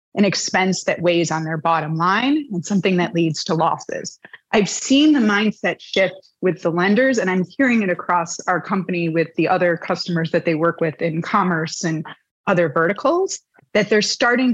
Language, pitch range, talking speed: English, 175-215 Hz, 185 wpm